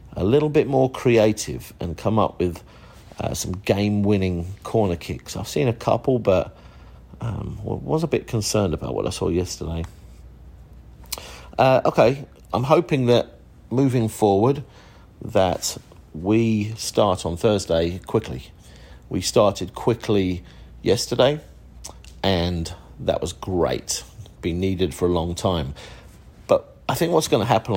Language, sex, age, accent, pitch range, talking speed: English, male, 50-69, British, 85-115 Hz, 135 wpm